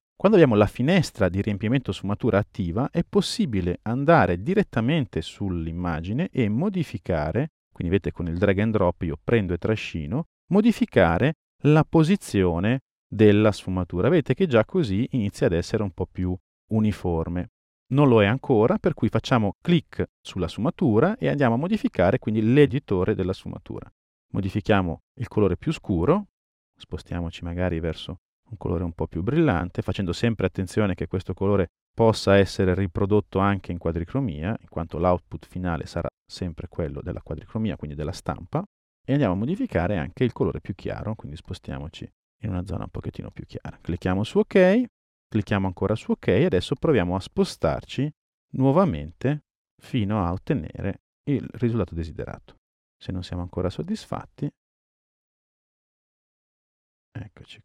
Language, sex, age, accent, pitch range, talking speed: Italian, male, 40-59, native, 90-130 Hz, 145 wpm